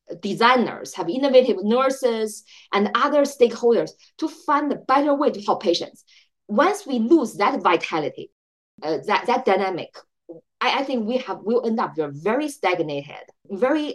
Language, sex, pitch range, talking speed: English, female, 195-270 Hz, 150 wpm